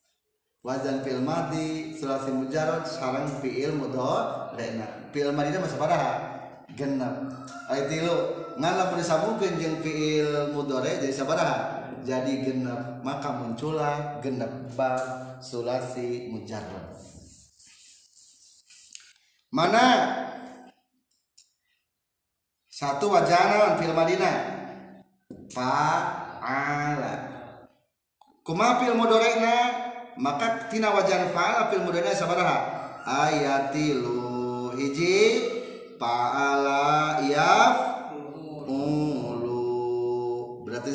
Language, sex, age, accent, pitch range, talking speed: Indonesian, male, 30-49, native, 125-160 Hz, 75 wpm